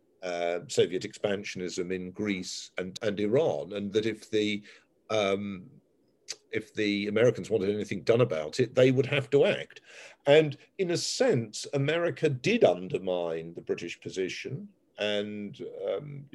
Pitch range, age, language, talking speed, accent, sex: 100-150 Hz, 50-69, English, 140 wpm, British, male